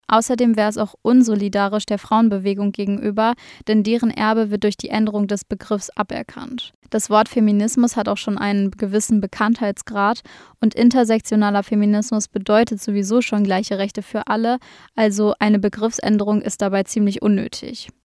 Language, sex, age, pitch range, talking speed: German, female, 20-39, 210-230 Hz, 145 wpm